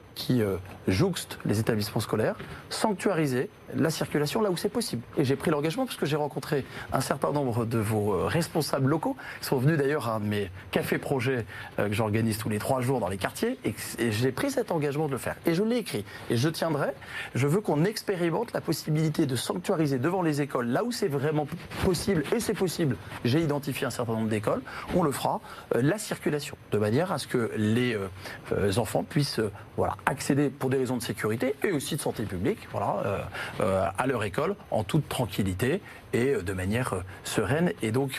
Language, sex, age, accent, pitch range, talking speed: French, male, 40-59, French, 110-155 Hz, 200 wpm